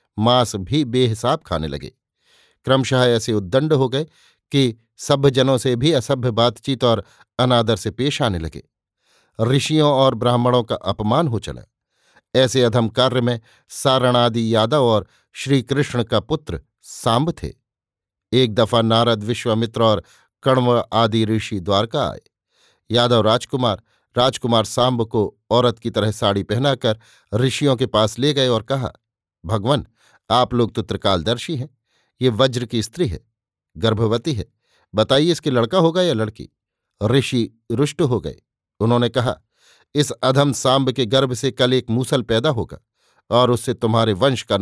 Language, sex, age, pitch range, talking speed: Hindi, male, 50-69, 110-135 Hz, 145 wpm